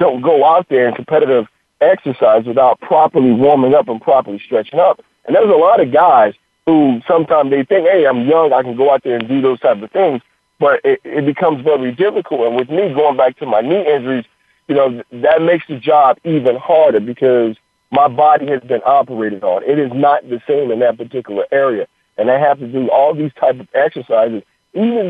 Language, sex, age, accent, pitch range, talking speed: English, male, 40-59, American, 130-170 Hz, 215 wpm